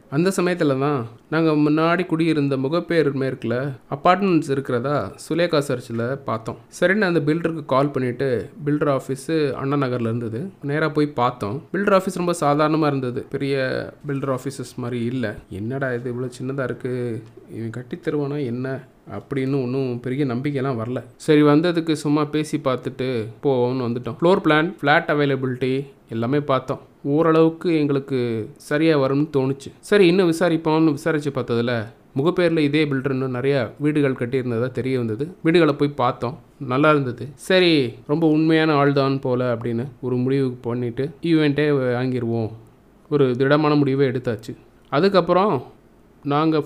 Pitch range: 125-155 Hz